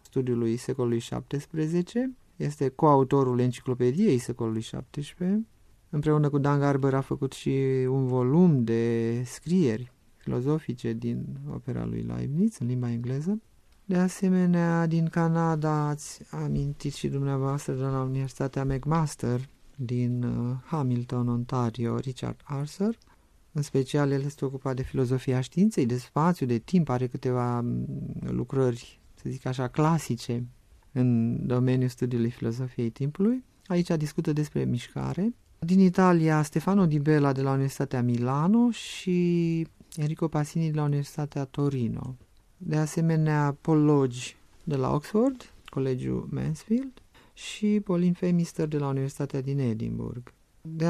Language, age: Romanian, 30-49